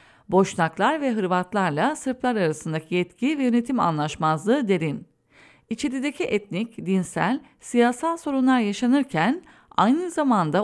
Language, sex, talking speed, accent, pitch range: English, female, 100 wpm, Turkish, 185-265 Hz